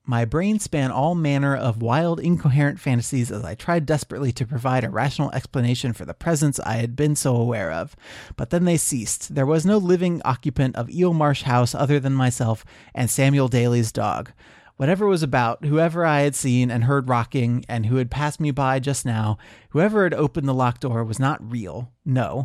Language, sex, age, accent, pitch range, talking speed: English, male, 30-49, American, 125-150 Hz, 200 wpm